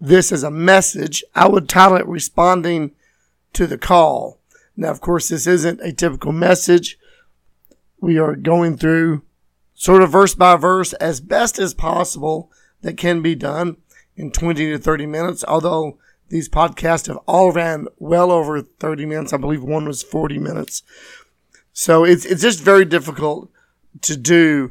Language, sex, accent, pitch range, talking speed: English, male, American, 145-175 Hz, 160 wpm